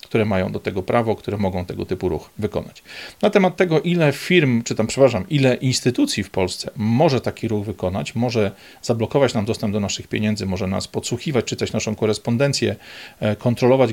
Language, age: Polish, 40-59